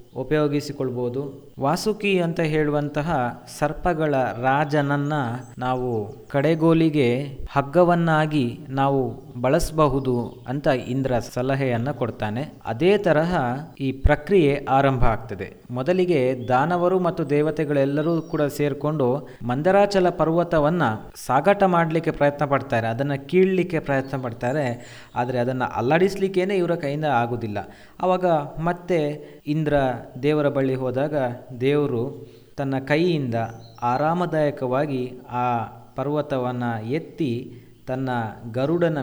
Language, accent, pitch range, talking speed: Kannada, native, 125-155 Hz, 90 wpm